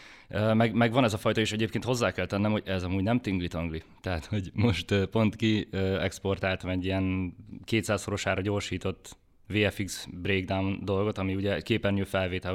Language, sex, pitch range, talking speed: Hungarian, male, 95-115 Hz, 165 wpm